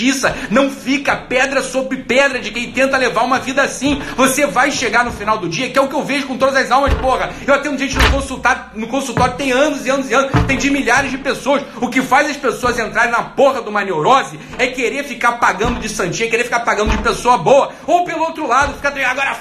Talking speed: 245 wpm